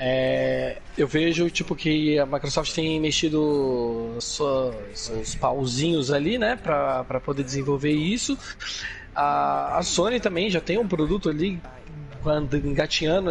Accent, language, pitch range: Brazilian, Portuguese, 145-180 Hz